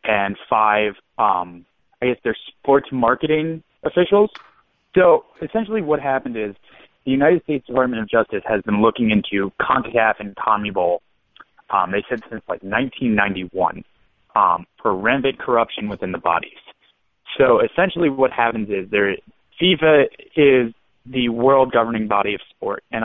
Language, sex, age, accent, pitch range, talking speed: English, male, 30-49, American, 105-140 Hz, 145 wpm